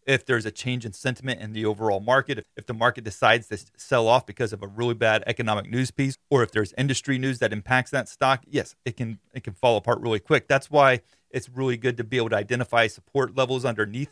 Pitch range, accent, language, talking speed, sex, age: 120-165 Hz, American, English, 240 wpm, male, 30-49